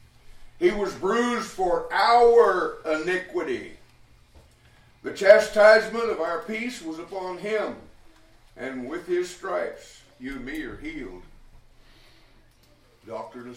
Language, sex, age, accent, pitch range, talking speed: English, male, 60-79, American, 150-215 Hz, 105 wpm